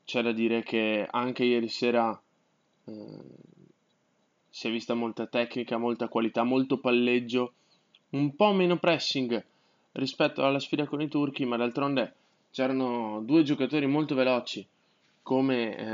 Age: 20-39